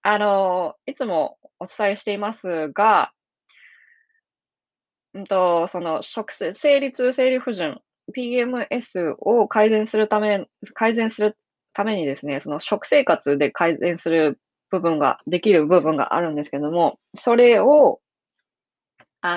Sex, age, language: female, 20-39, Japanese